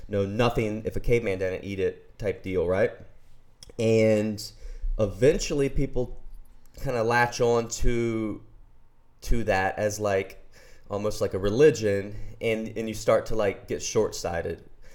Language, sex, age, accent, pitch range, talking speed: English, male, 20-39, American, 105-125 Hz, 140 wpm